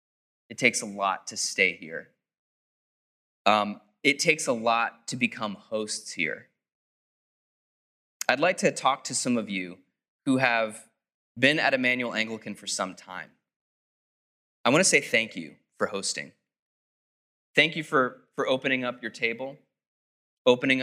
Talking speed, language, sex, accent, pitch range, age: 140 wpm, English, male, American, 115-140 Hz, 20-39